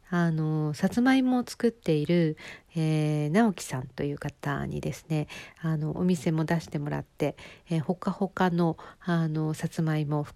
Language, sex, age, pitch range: Japanese, female, 50-69, 150-175 Hz